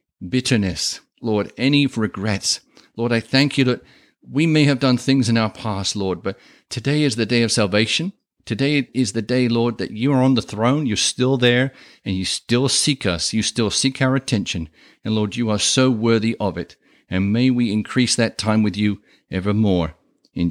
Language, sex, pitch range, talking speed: English, male, 105-135 Hz, 200 wpm